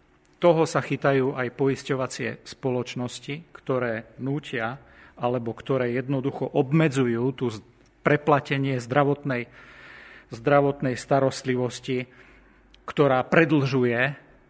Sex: male